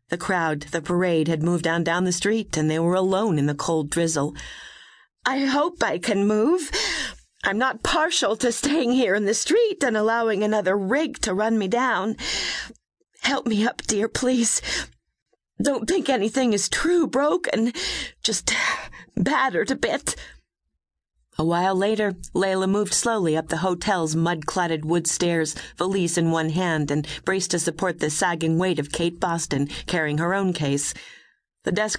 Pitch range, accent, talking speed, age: 150-205 Hz, American, 165 wpm, 40-59